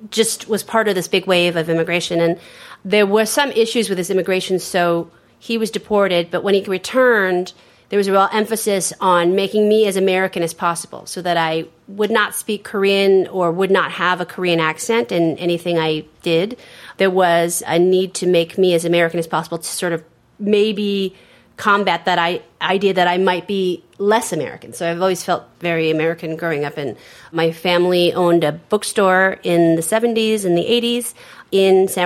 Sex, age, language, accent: female, 30-49, English, American